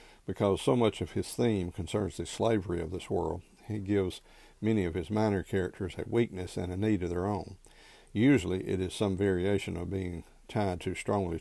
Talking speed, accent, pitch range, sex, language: 195 wpm, American, 90-105 Hz, male, English